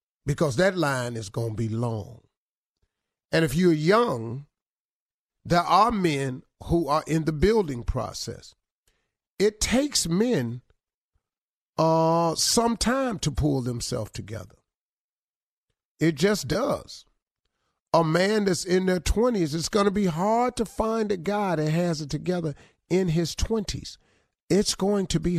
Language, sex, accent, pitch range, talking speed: English, male, American, 155-215 Hz, 140 wpm